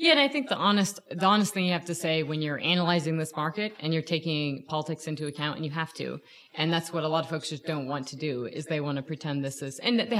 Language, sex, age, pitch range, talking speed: English, female, 30-49, 145-175 Hz, 290 wpm